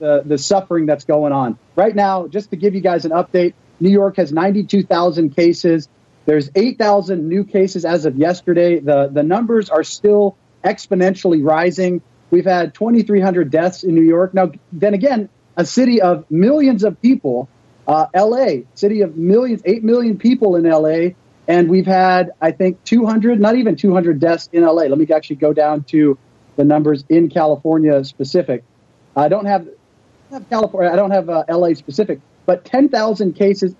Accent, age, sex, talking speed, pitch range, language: American, 40-59, male, 170 wpm, 155-200 Hz, English